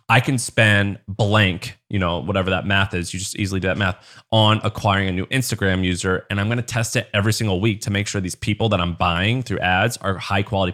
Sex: male